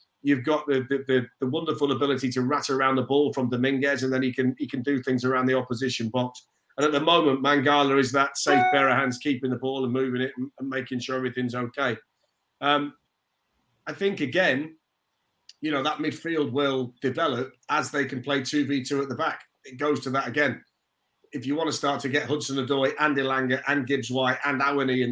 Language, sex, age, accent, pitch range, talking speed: English, male, 40-59, British, 130-150 Hz, 210 wpm